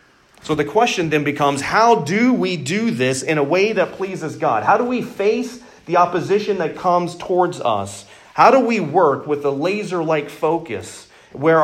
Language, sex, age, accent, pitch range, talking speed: English, male, 40-59, American, 145-205 Hz, 180 wpm